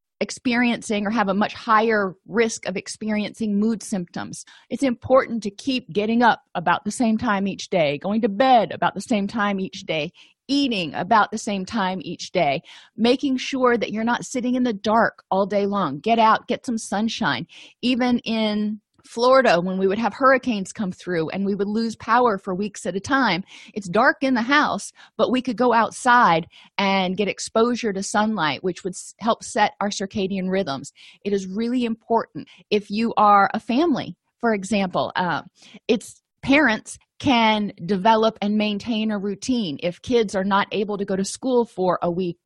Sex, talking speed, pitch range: female, 185 wpm, 195-240 Hz